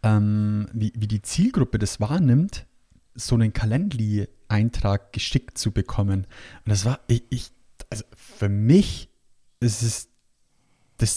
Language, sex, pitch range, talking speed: German, male, 105-130 Hz, 130 wpm